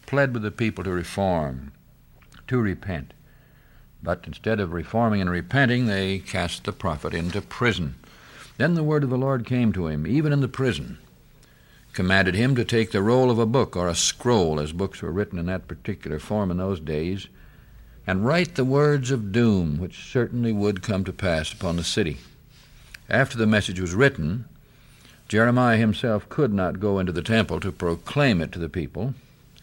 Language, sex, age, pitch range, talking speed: English, male, 60-79, 90-120 Hz, 180 wpm